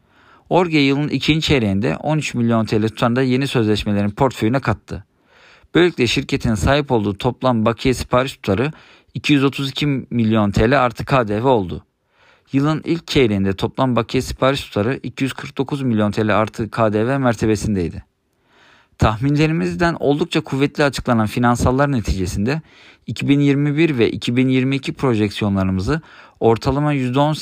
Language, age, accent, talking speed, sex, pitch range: Turkish, 50-69, native, 110 wpm, male, 110-140 Hz